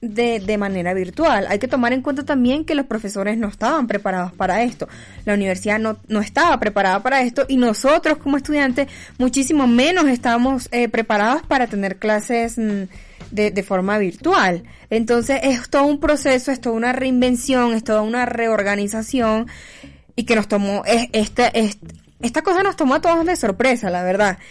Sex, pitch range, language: female, 215-275 Hz, Spanish